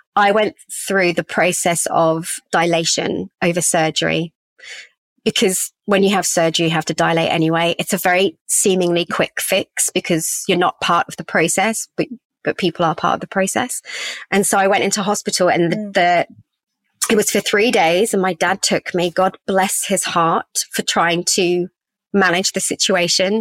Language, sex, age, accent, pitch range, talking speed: English, female, 30-49, British, 170-195 Hz, 175 wpm